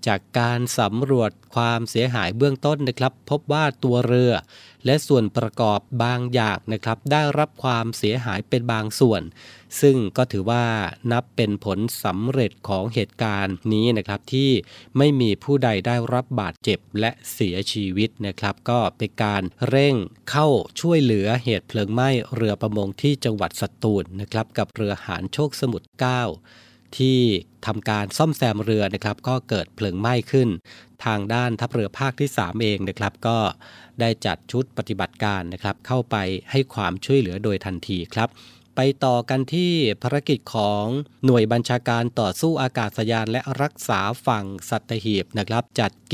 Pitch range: 105-125 Hz